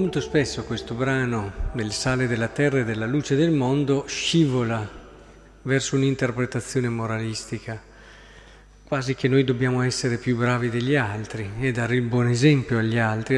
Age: 50-69